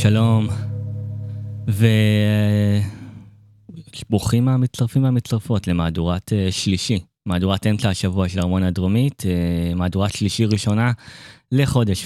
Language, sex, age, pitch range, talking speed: Hebrew, male, 20-39, 100-125 Hz, 80 wpm